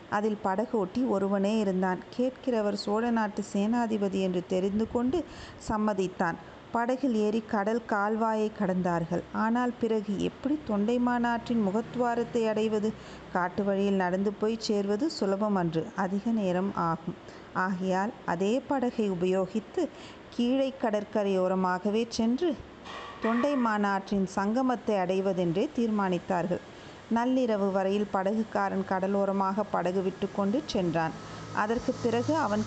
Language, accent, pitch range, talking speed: Tamil, native, 195-230 Hz, 105 wpm